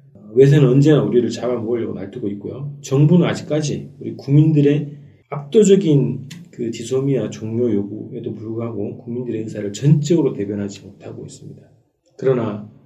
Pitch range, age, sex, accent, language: 110-145 Hz, 40-59, male, native, Korean